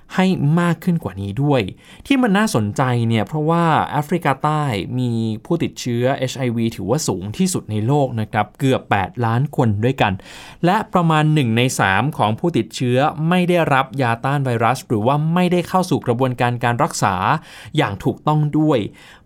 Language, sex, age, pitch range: Thai, male, 20-39, 115-155 Hz